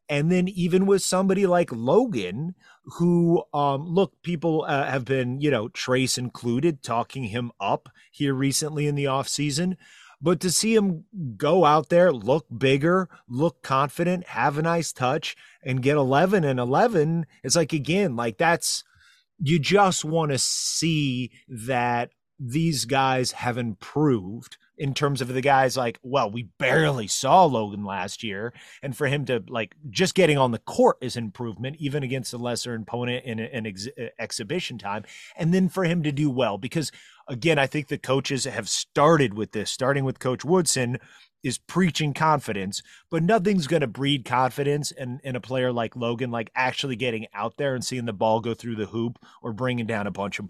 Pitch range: 120-165 Hz